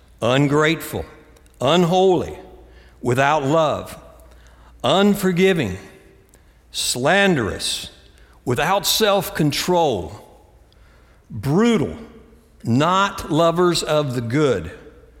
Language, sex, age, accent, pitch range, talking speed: English, male, 60-79, American, 120-175 Hz, 55 wpm